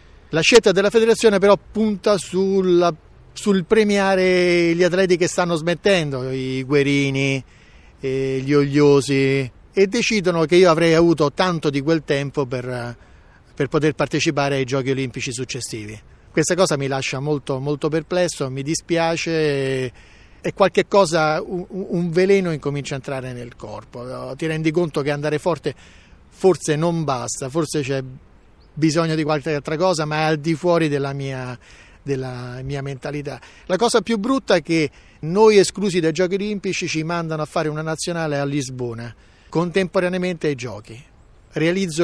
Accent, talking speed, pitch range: native, 150 wpm, 135-175 Hz